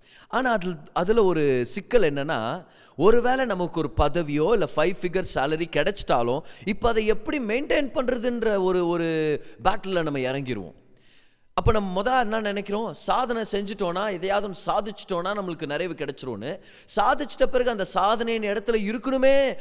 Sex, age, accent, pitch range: male, 30-49, native, 140-215 Hz